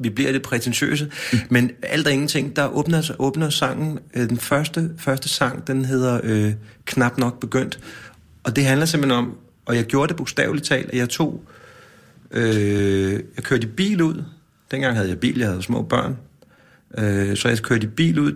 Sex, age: male, 30-49